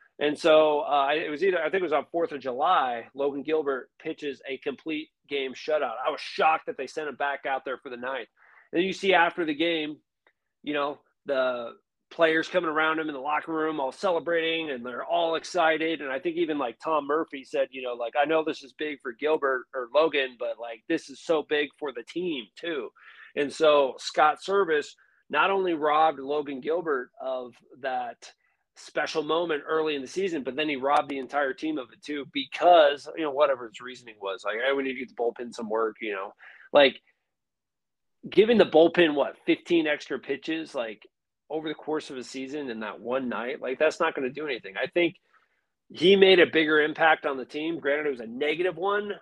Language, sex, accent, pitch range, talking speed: English, male, American, 135-165 Hz, 215 wpm